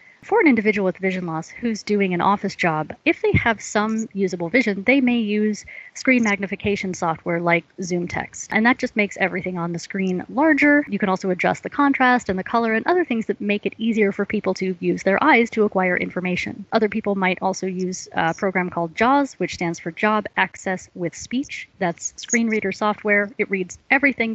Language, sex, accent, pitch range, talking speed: English, female, American, 180-230 Hz, 200 wpm